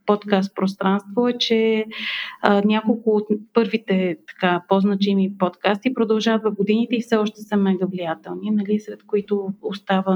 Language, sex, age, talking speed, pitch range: Bulgarian, female, 30-49, 140 wpm, 200-230 Hz